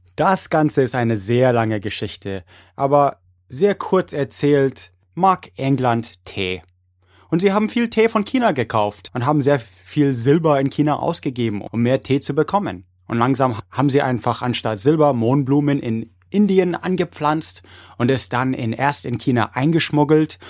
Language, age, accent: German, 20-39, German